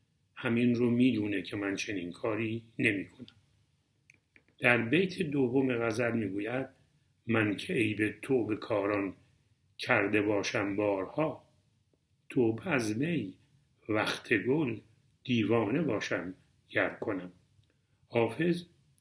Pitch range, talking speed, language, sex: 105-130 Hz, 100 wpm, Persian, male